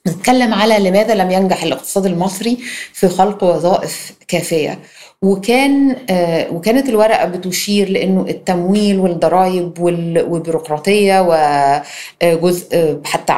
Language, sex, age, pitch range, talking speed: Arabic, female, 30-49, 170-210 Hz, 95 wpm